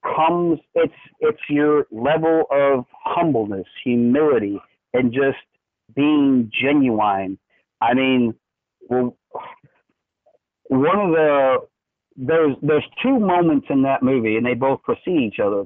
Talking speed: 115 wpm